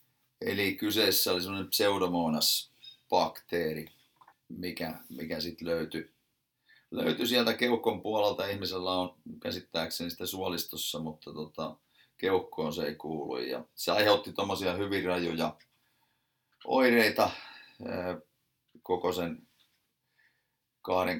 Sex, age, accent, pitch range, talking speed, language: male, 30-49, native, 80-90 Hz, 95 wpm, Finnish